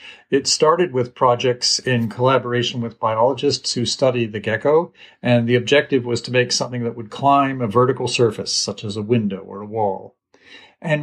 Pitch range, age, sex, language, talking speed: 120-145 Hz, 50-69, male, English, 180 wpm